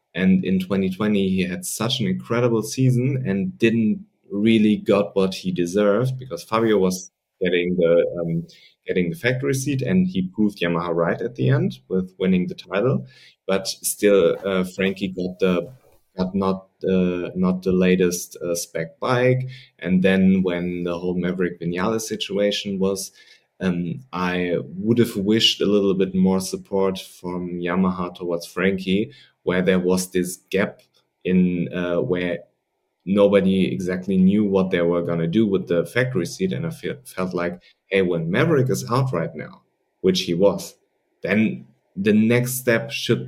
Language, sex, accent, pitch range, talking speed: English, male, German, 90-110 Hz, 160 wpm